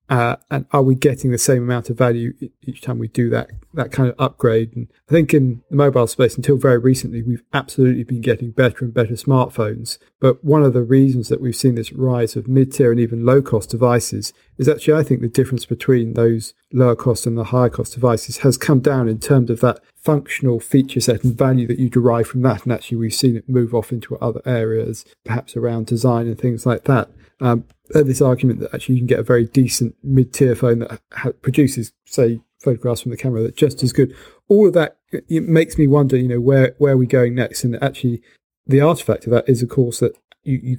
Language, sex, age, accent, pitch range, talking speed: English, male, 40-59, British, 120-135 Hz, 230 wpm